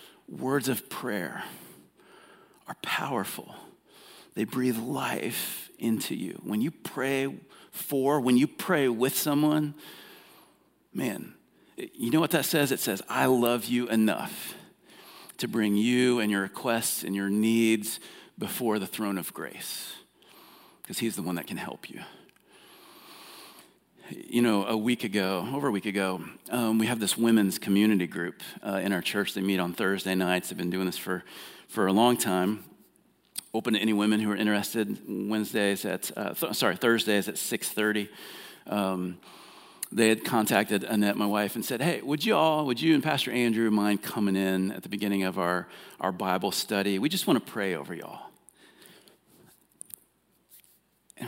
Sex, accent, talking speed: male, American, 160 wpm